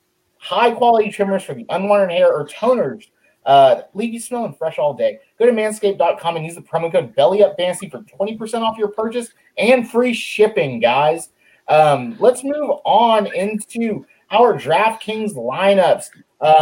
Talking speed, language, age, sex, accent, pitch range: 150 wpm, English, 30-49, male, American, 140-215 Hz